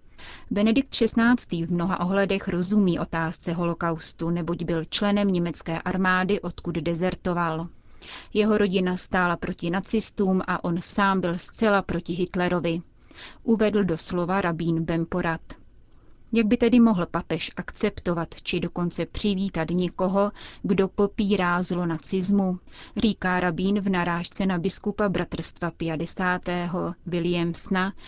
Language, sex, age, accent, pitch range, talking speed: Czech, female, 30-49, native, 170-195 Hz, 120 wpm